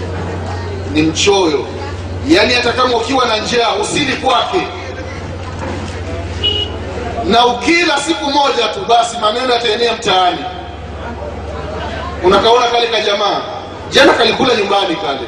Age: 30-49